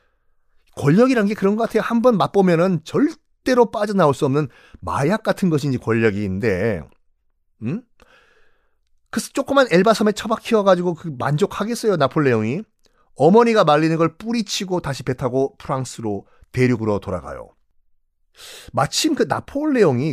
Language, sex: Korean, male